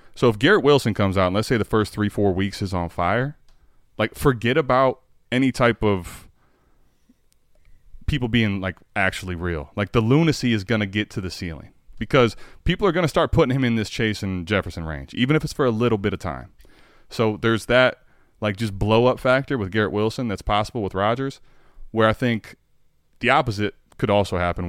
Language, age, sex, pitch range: English, 20-39, male, 90-120 Hz